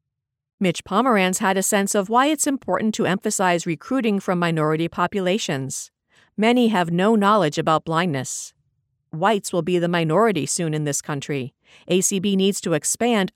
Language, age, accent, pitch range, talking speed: English, 50-69, American, 155-210 Hz, 155 wpm